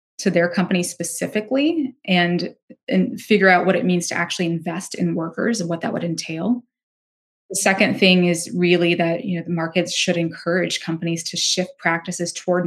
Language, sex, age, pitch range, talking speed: English, female, 20-39, 170-195 Hz, 180 wpm